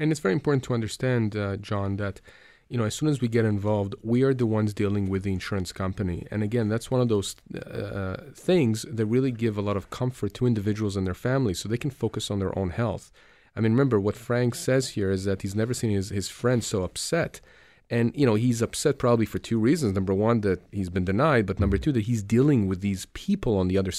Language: English